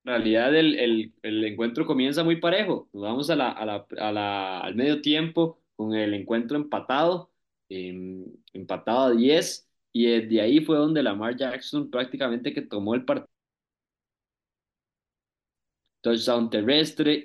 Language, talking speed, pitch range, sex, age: Spanish, 155 wpm, 120-160 Hz, male, 20-39